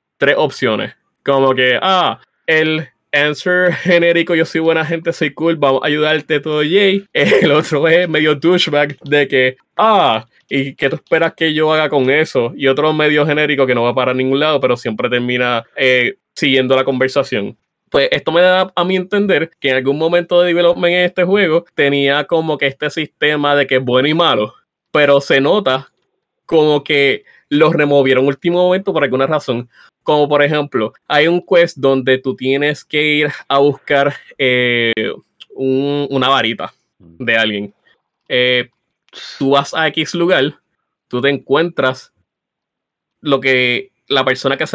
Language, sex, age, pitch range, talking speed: English, male, 20-39, 135-165 Hz, 170 wpm